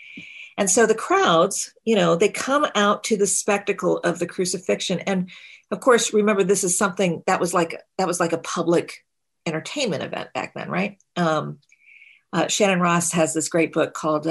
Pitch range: 165-200 Hz